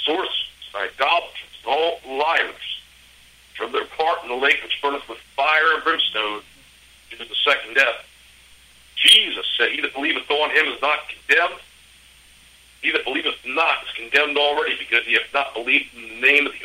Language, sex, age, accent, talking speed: English, male, 60-79, American, 175 wpm